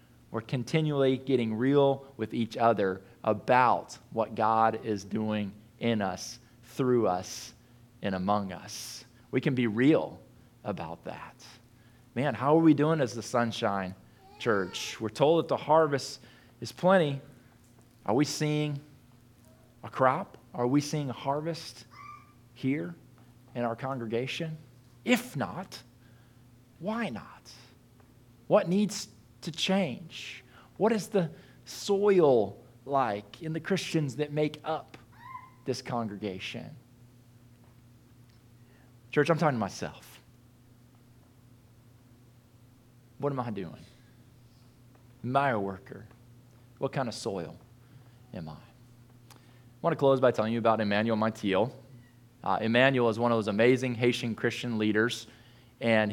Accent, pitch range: American, 115-135 Hz